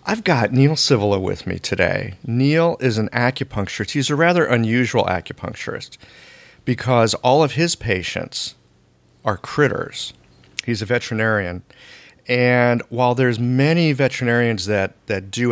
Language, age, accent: English, 40-59, American